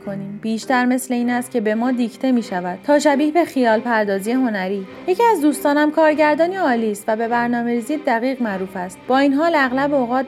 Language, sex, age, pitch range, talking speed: Persian, female, 30-49, 225-285 Hz, 195 wpm